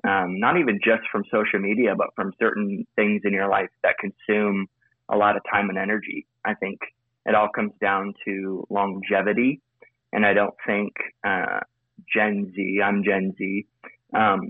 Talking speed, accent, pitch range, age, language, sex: 170 wpm, American, 100-120 Hz, 20-39, English, male